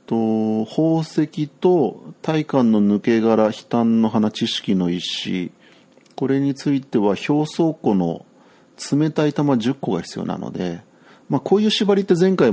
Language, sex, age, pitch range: Japanese, male, 40-59, 105-160 Hz